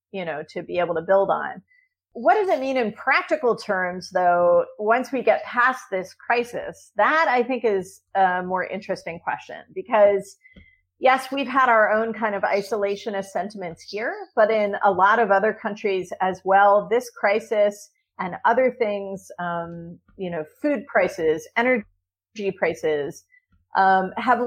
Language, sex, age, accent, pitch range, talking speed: English, female, 40-59, American, 185-235 Hz, 155 wpm